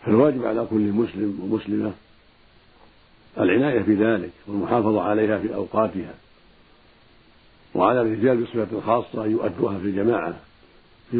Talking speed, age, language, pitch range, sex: 105 wpm, 60-79, Arabic, 110-120 Hz, male